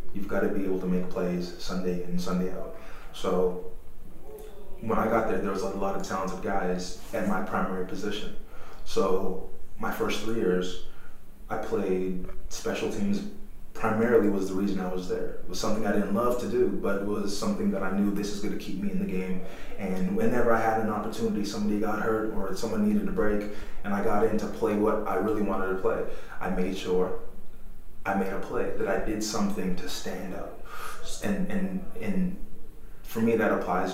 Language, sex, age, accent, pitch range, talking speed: English, male, 20-39, American, 95-110 Hz, 205 wpm